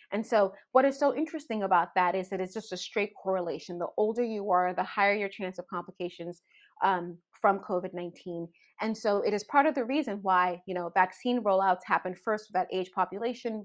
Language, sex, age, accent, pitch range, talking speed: English, female, 30-49, American, 185-235 Hz, 205 wpm